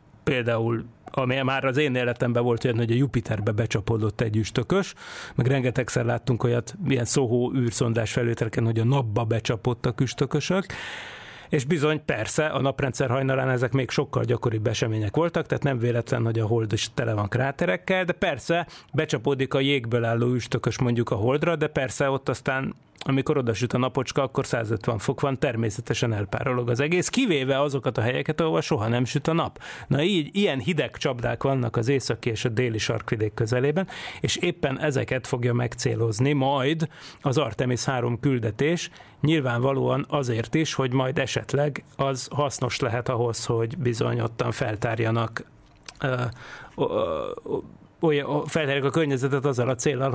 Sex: male